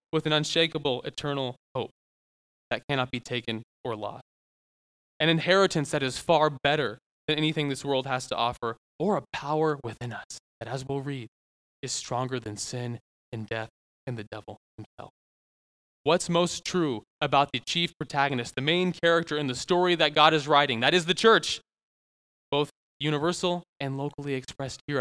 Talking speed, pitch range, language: 170 wpm, 125-160 Hz, English